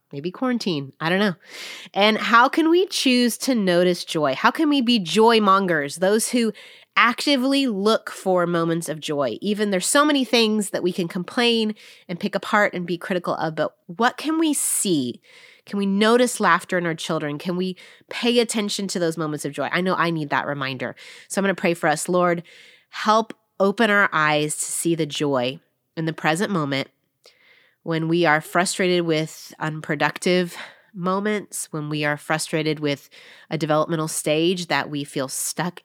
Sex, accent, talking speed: female, American, 180 wpm